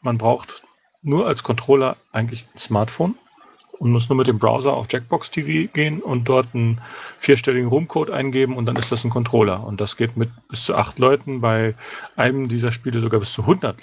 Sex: male